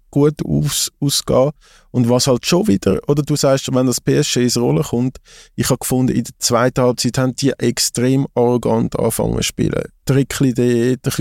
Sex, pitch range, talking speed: male, 110-135 Hz, 170 wpm